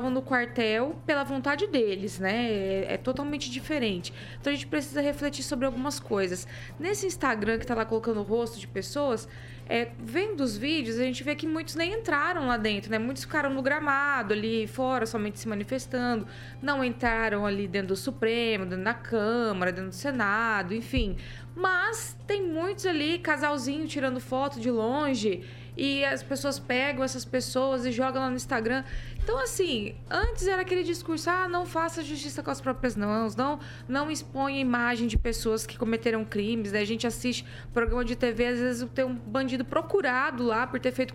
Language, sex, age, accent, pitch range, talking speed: Portuguese, female, 20-39, Brazilian, 225-300 Hz, 180 wpm